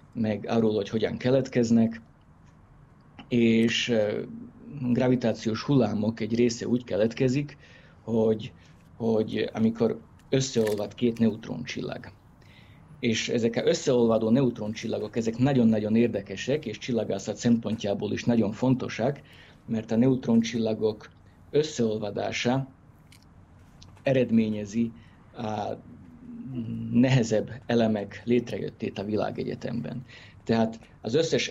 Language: Hungarian